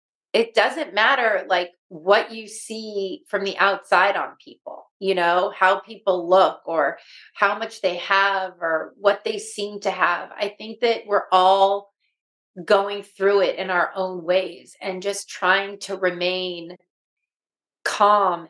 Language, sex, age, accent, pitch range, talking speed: English, female, 30-49, American, 185-215 Hz, 150 wpm